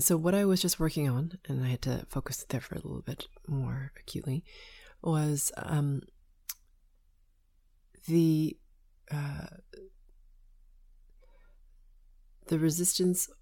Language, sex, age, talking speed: English, female, 30-49, 110 wpm